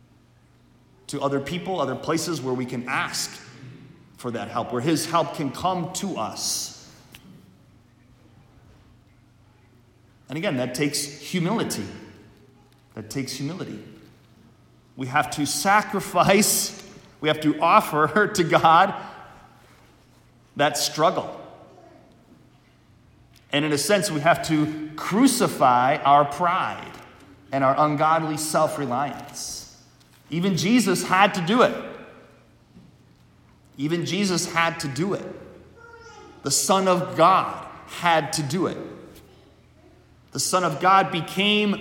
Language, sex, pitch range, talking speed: English, male, 125-170 Hz, 110 wpm